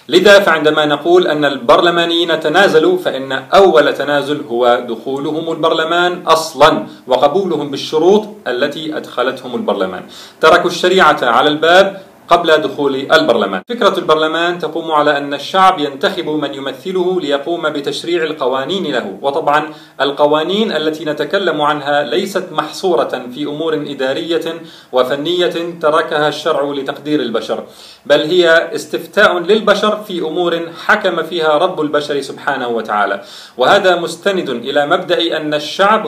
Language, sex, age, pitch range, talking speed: Arabic, male, 40-59, 150-185 Hz, 120 wpm